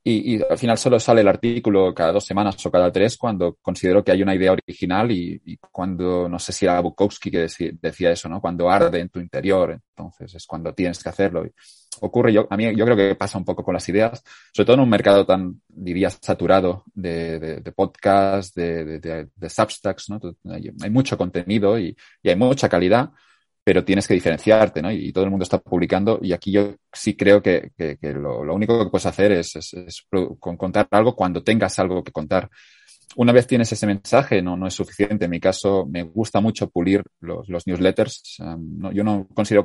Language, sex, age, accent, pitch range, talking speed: Spanish, male, 30-49, Spanish, 90-105 Hz, 215 wpm